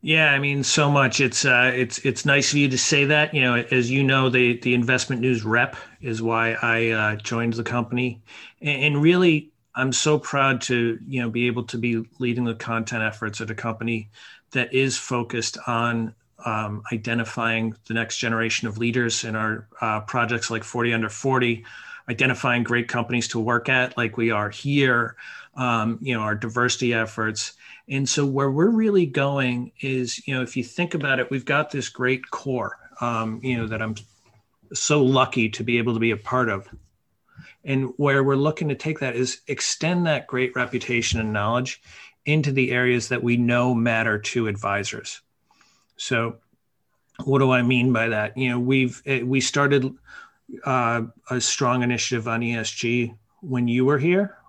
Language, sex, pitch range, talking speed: English, male, 115-135 Hz, 180 wpm